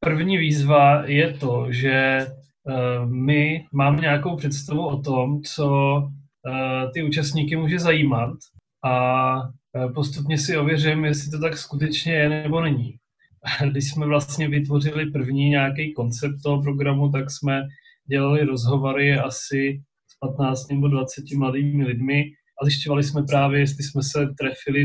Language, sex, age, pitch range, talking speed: Czech, male, 30-49, 135-150 Hz, 130 wpm